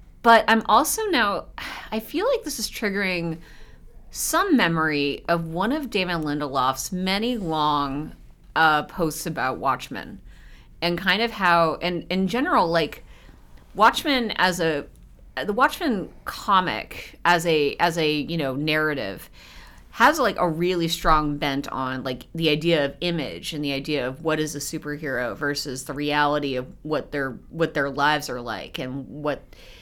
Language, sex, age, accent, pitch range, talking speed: English, female, 30-49, American, 145-180 Hz, 155 wpm